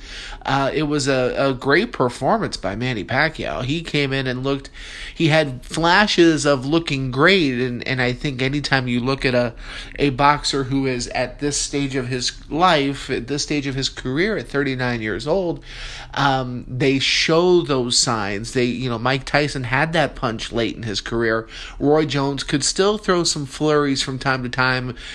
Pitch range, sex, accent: 125-145 Hz, male, American